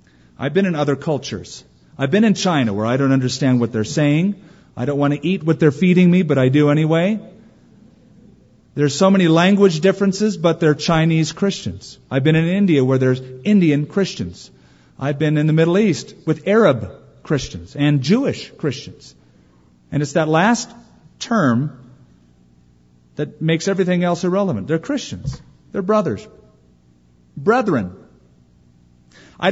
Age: 50-69